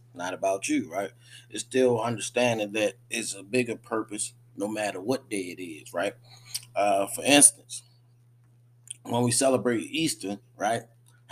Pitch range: 105-125 Hz